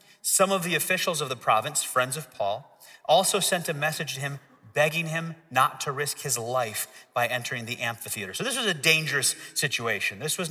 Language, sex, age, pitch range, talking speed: English, male, 30-49, 150-195 Hz, 200 wpm